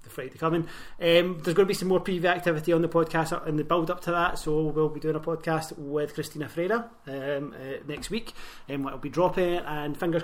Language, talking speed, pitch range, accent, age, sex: English, 230 wpm, 150-175 Hz, British, 30-49, male